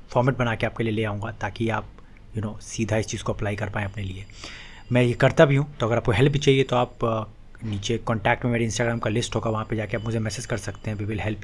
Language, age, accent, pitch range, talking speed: Hindi, 30-49, native, 110-135 Hz, 280 wpm